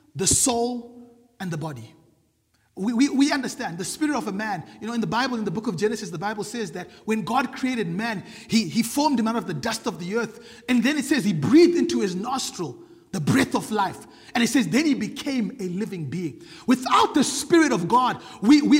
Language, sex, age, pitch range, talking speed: English, male, 30-49, 225-300 Hz, 230 wpm